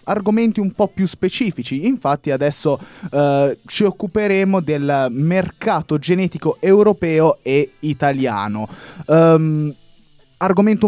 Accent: native